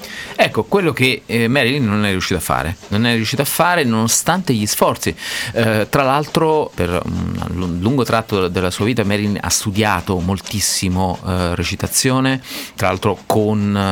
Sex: male